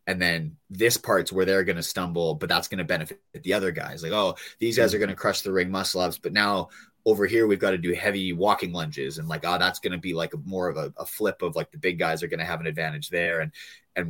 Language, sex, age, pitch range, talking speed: English, male, 30-49, 85-100 Hz, 290 wpm